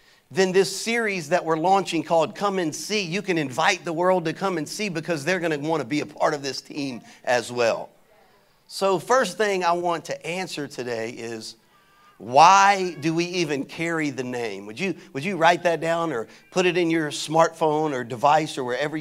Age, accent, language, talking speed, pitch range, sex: 50-69, American, English, 210 wpm, 155-190 Hz, male